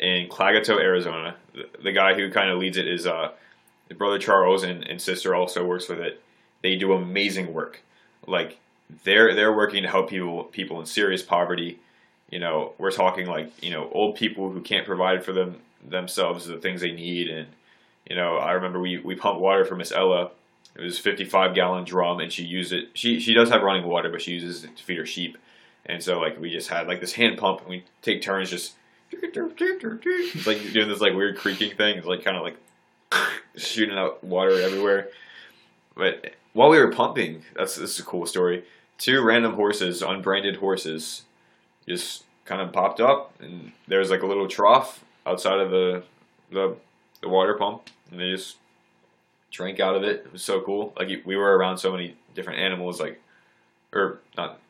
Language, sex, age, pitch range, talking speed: English, male, 20-39, 90-100 Hz, 195 wpm